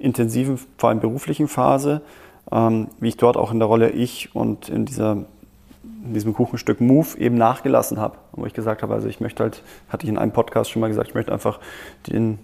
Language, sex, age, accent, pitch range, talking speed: German, male, 20-39, German, 110-120 Hz, 210 wpm